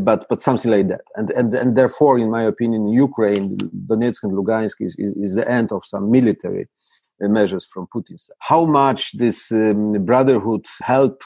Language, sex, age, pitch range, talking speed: English, male, 50-69, 105-125 Hz, 175 wpm